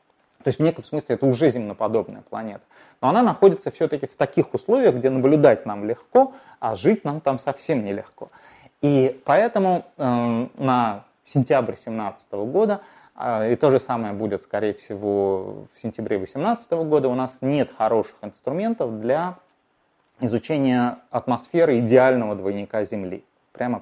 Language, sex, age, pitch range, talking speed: Russian, male, 20-39, 115-155 Hz, 145 wpm